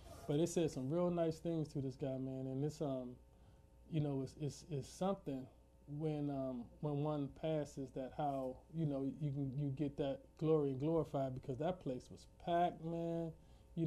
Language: English